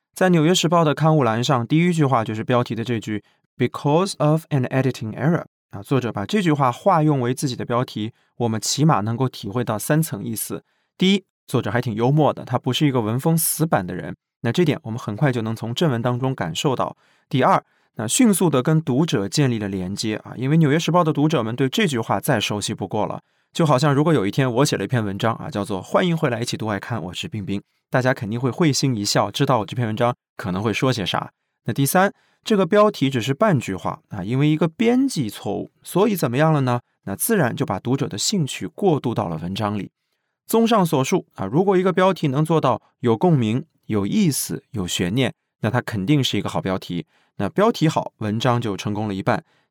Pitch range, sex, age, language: 115-160 Hz, male, 20-39, English